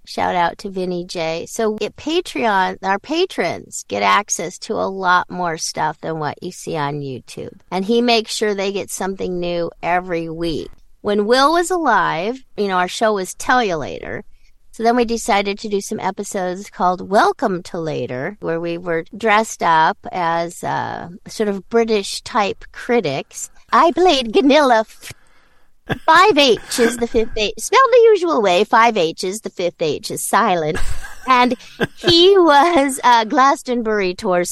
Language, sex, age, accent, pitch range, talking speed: English, female, 50-69, American, 180-260 Hz, 165 wpm